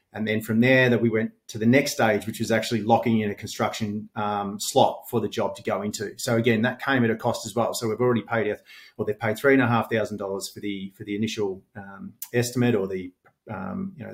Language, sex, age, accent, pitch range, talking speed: English, male, 30-49, Australian, 105-120 Hz, 235 wpm